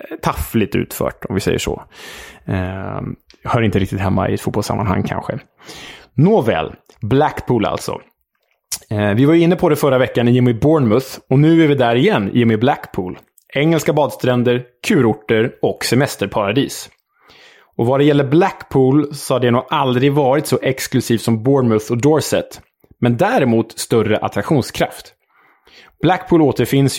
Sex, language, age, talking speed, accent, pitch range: male, Swedish, 20-39, 150 wpm, Norwegian, 110-135 Hz